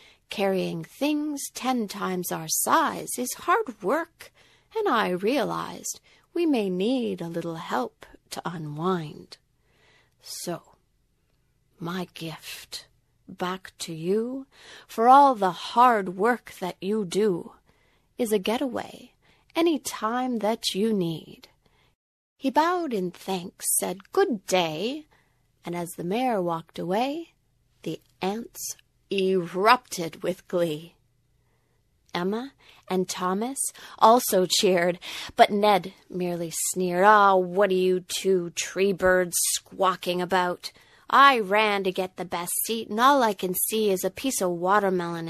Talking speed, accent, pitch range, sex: 125 wpm, American, 175-245 Hz, female